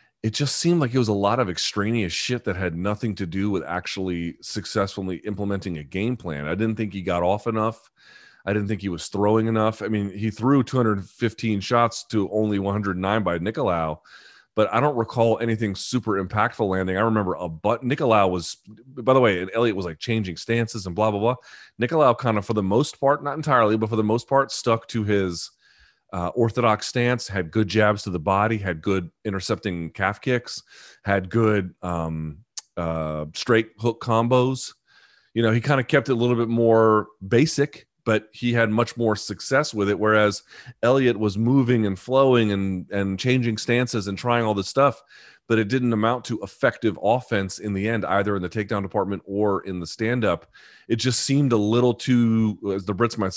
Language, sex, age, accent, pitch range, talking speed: English, male, 30-49, American, 100-120 Hz, 200 wpm